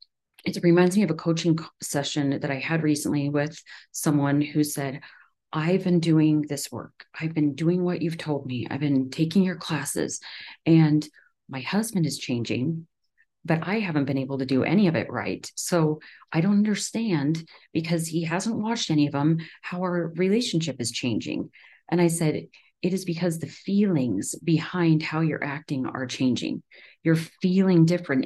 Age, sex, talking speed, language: 40-59, female, 170 wpm, English